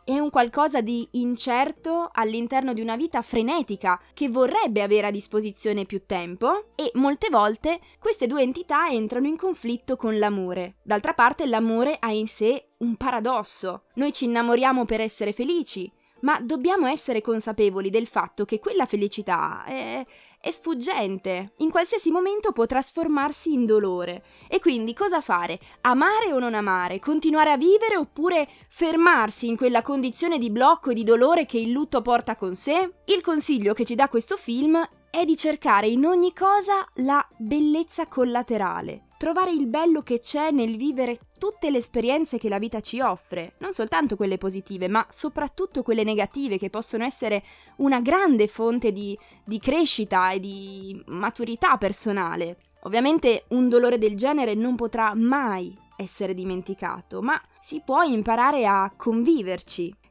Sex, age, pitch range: female, 20-39, 215-305 Hz